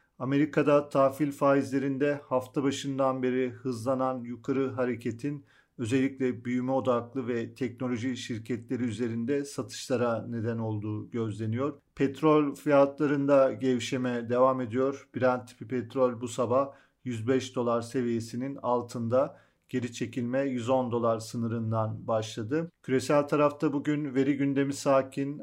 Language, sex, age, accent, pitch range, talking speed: Turkish, male, 40-59, native, 120-140 Hz, 110 wpm